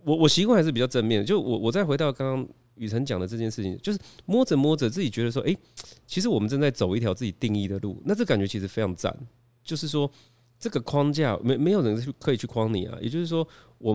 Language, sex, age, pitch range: Chinese, male, 30-49, 100-130 Hz